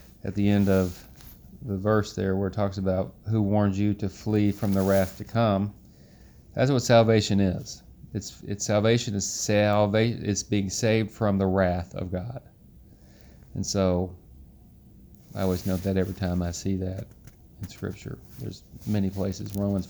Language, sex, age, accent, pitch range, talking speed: English, male, 30-49, American, 95-110 Hz, 165 wpm